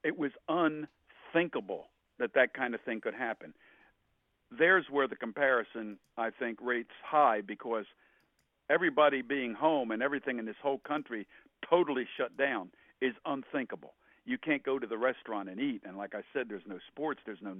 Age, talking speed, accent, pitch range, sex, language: 60-79, 170 wpm, American, 115-140 Hz, male, English